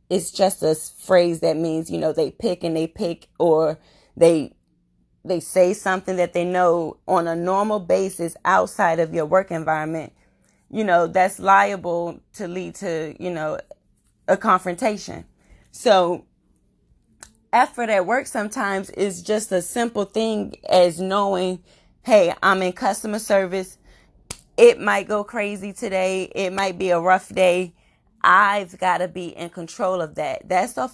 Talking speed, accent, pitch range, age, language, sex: 155 wpm, American, 175-205 Hz, 20-39, English, female